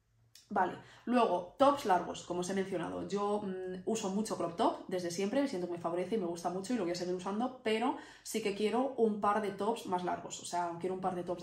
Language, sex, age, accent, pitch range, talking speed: Spanish, female, 20-39, Spanish, 180-220 Hz, 245 wpm